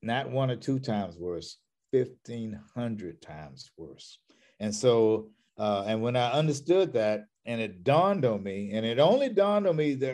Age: 50-69